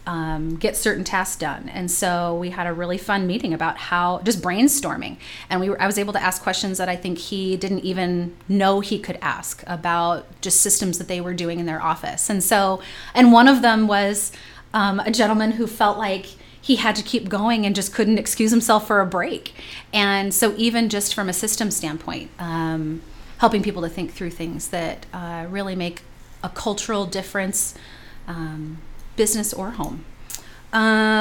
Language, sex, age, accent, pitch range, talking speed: English, female, 30-49, American, 160-200 Hz, 190 wpm